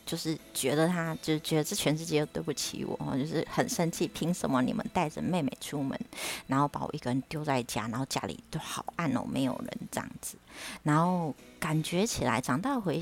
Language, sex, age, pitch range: Chinese, female, 20-39, 140-165 Hz